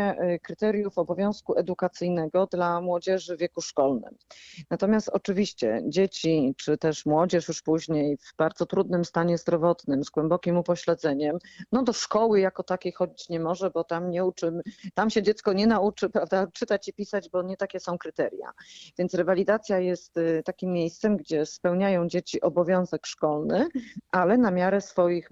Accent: native